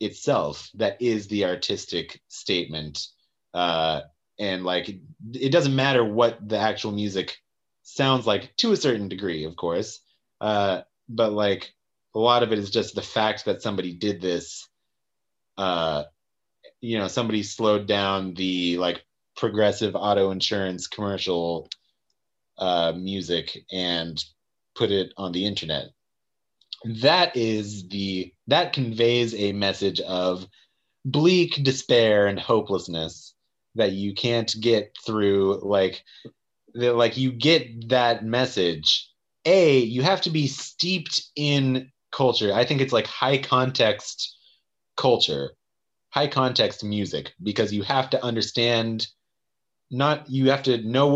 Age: 30-49